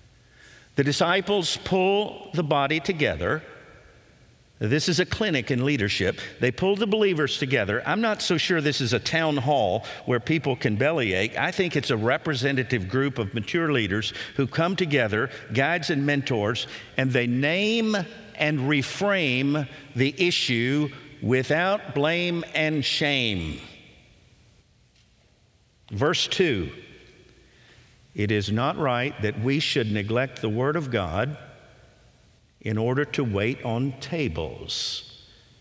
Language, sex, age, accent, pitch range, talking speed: English, male, 50-69, American, 115-155 Hz, 130 wpm